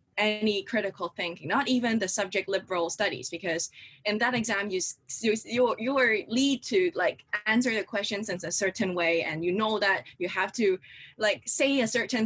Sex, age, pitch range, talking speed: female, 20-39, 170-215 Hz, 185 wpm